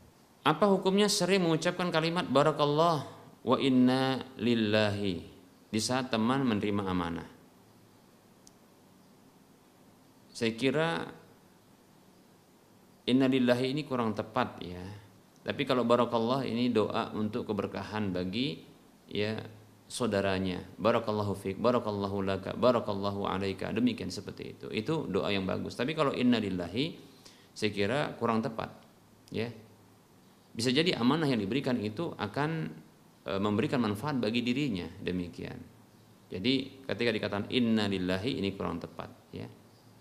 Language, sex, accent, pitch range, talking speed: Indonesian, male, native, 105-140 Hz, 110 wpm